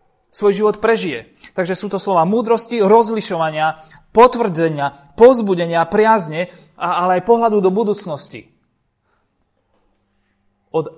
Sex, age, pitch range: male, 30-49, 125-185 Hz